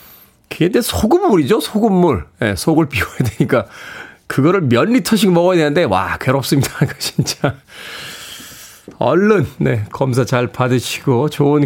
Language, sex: Korean, male